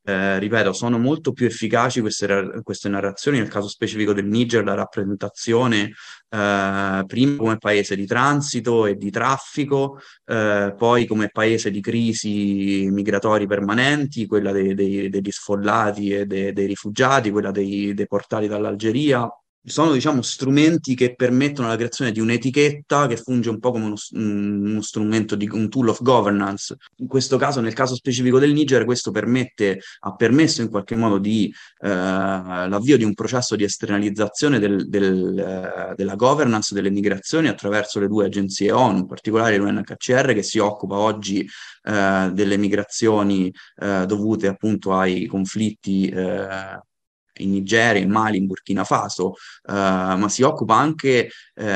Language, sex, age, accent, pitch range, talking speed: Italian, male, 20-39, native, 100-120 Hz, 150 wpm